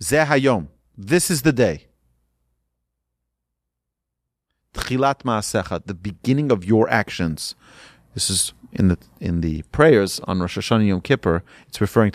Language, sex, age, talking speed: English, male, 40-59, 125 wpm